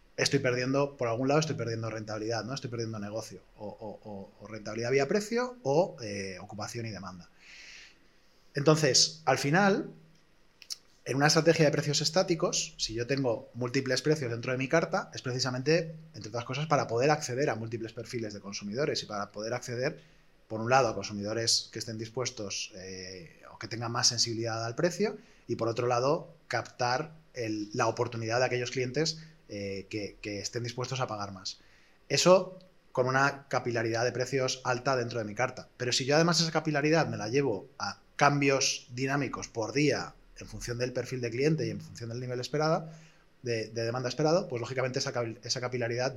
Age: 20-39